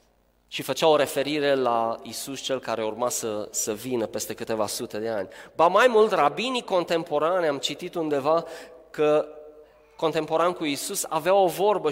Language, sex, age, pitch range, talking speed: Romanian, male, 20-39, 135-205 Hz, 160 wpm